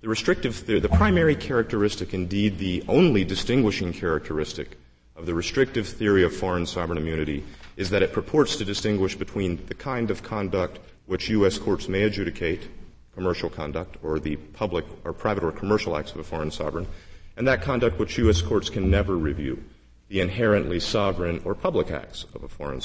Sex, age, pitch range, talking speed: male, 40-59, 85-115 Hz, 175 wpm